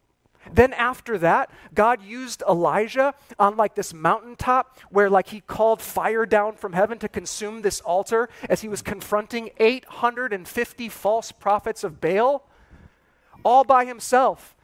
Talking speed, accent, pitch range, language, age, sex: 140 wpm, American, 200-240 Hz, English, 30-49, male